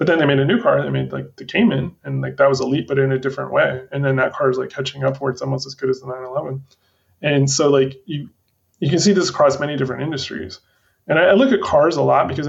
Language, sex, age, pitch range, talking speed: English, male, 20-39, 130-150 Hz, 295 wpm